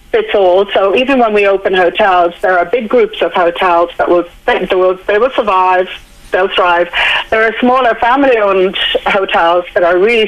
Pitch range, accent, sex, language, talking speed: 180-245 Hz, British, female, English, 180 wpm